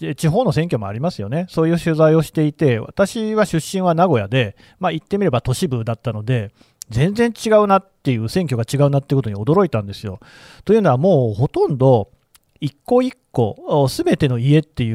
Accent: native